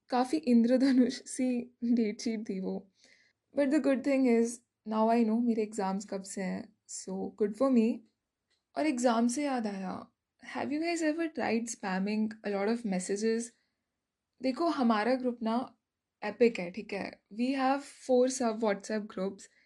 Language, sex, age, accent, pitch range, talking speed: Hindi, female, 20-39, native, 210-255 Hz, 160 wpm